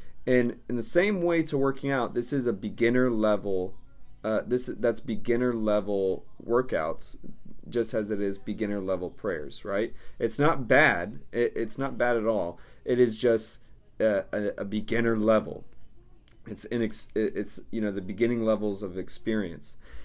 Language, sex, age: English, male, 30-49